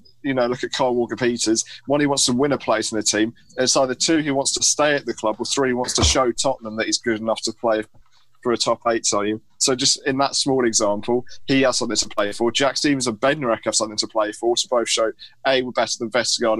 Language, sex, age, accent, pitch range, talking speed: English, male, 20-39, British, 110-130 Hz, 265 wpm